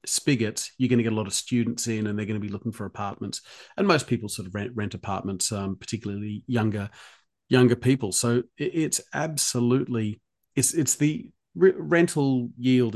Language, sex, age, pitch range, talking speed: English, male, 40-59, 110-125 Hz, 190 wpm